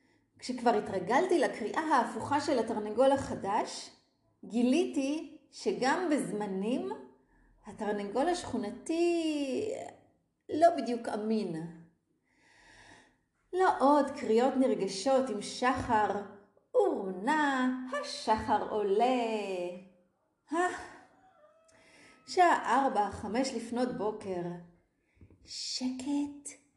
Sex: female